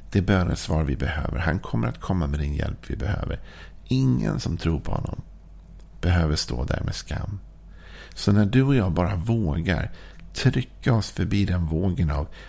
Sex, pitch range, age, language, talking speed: male, 80-100 Hz, 50-69, Swedish, 180 wpm